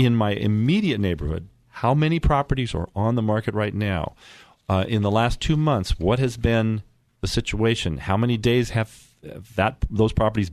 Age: 40-59